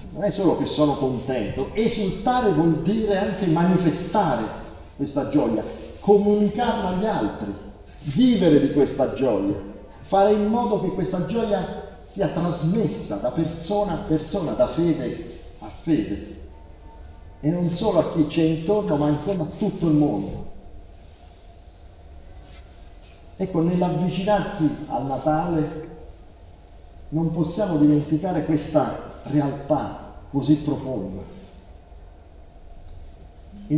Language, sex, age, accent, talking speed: Italian, male, 40-59, native, 110 wpm